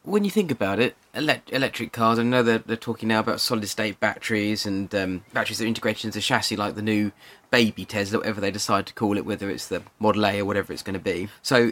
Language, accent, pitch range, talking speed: English, British, 105-120 Hz, 240 wpm